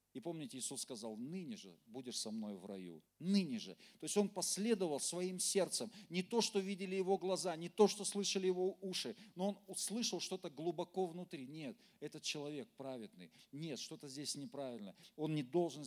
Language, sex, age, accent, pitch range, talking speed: Russian, male, 40-59, native, 140-190 Hz, 180 wpm